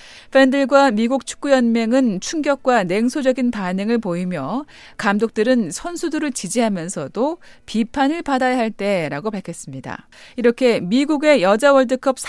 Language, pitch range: Korean, 200-275 Hz